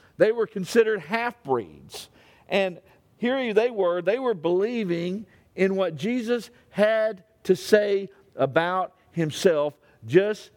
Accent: American